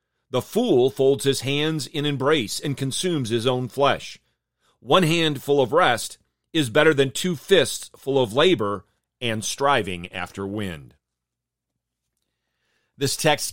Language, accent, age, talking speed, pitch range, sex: English, American, 40-59, 135 wpm, 115-150 Hz, male